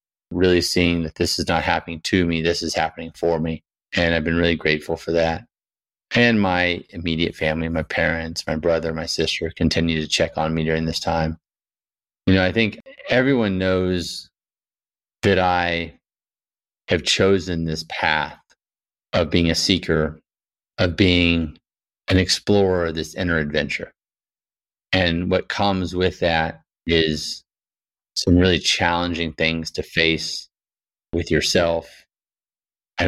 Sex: male